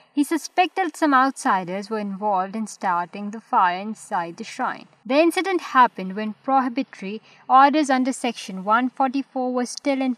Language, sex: Urdu, female